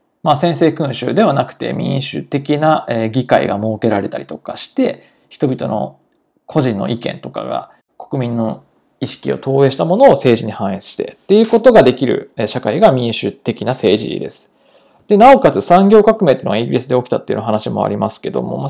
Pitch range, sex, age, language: 125-195 Hz, male, 20-39, Japanese